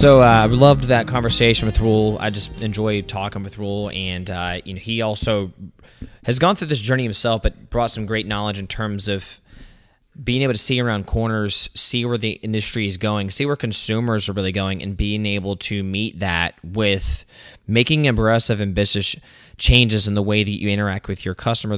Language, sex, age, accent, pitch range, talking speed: English, male, 20-39, American, 100-115 Hz, 200 wpm